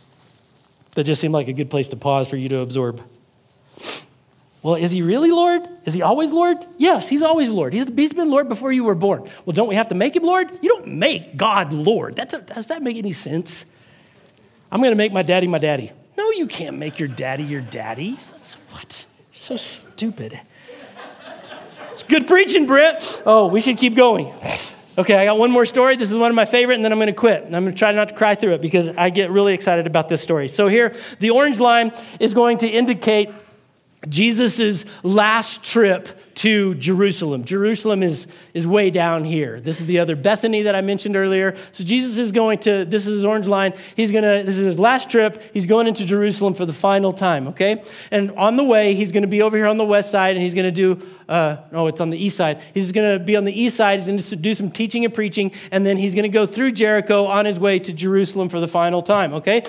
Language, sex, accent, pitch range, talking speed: English, male, American, 175-225 Hz, 230 wpm